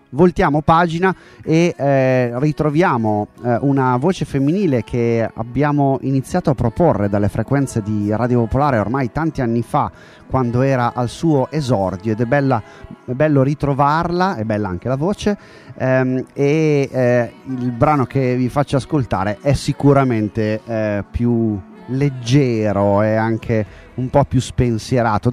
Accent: native